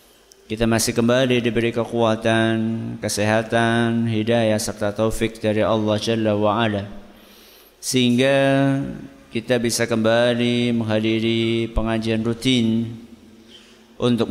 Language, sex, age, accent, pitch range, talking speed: Indonesian, male, 50-69, native, 110-125 Hz, 90 wpm